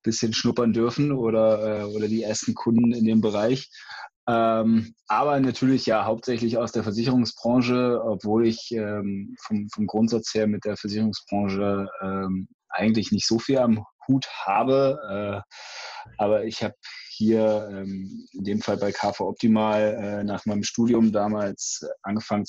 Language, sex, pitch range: German, male, 105-115 Hz